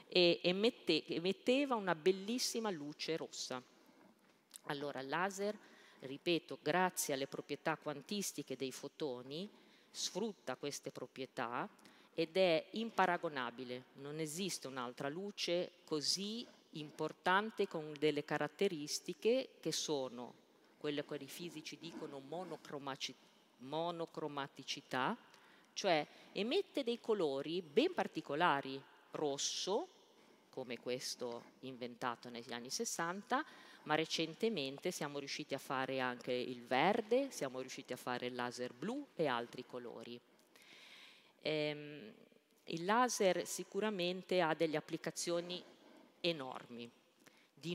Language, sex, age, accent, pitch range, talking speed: Italian, female, 40-59, native, 135-185 Hz, 100 wpm